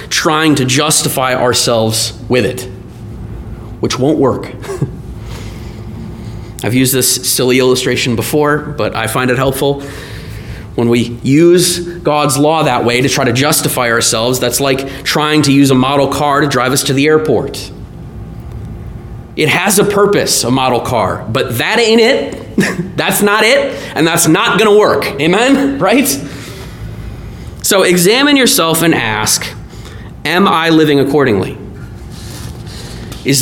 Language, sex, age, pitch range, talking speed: English, male, 30-49, 120-165 Hz, 140 wpm